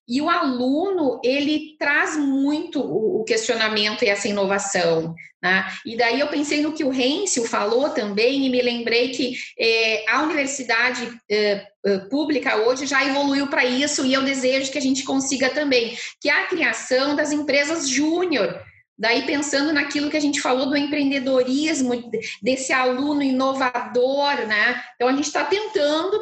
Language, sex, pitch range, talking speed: Portuguese, female, 235-295 Hz, 160 wpm